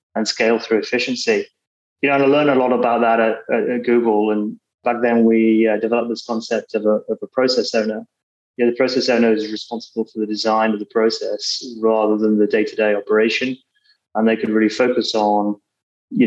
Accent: British